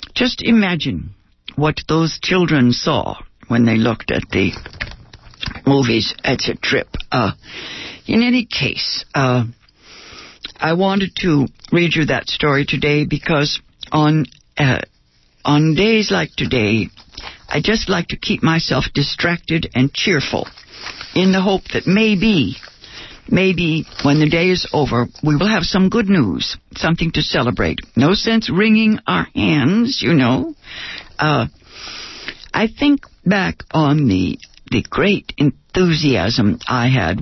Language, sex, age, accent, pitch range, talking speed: English, female, 60-79, American, 125-190 Hz, 130 wpm